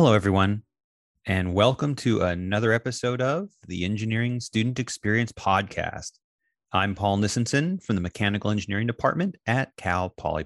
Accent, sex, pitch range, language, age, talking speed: American, male, 95-135 Hz, English, 30-49, 140 wpm